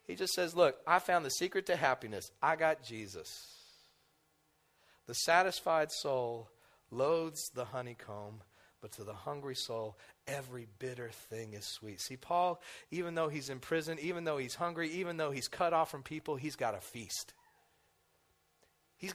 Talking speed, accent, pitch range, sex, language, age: 165 wpm, American, 135-215 Hz, male, English, 30-49